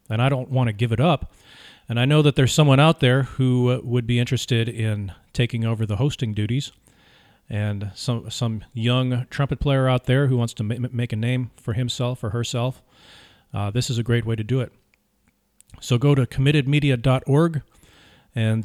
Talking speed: 185 wpm